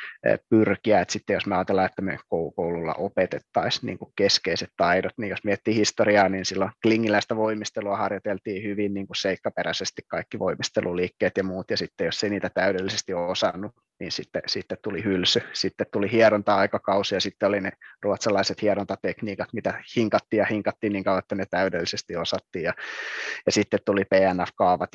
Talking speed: 160 wpm